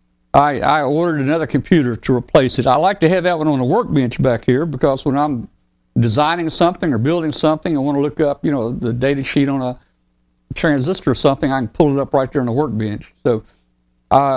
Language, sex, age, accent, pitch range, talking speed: English, male, 60-79, American, 110-155 Hz, 220 wpm